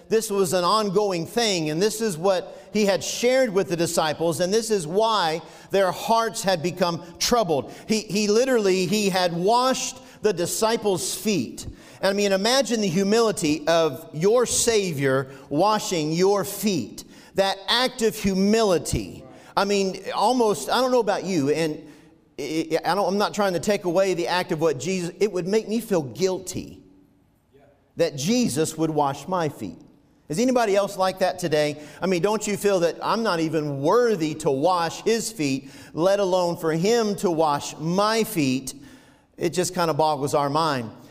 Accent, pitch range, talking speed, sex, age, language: American, 165-210 Hz, 170 wpm, male, 50-69, English